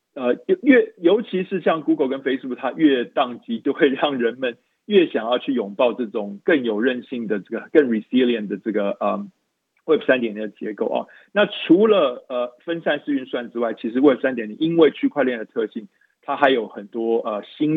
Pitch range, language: 115-160 Hz, Chinese